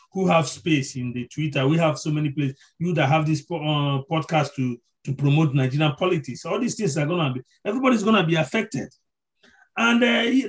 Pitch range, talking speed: 135-175 Hz, 195 wpm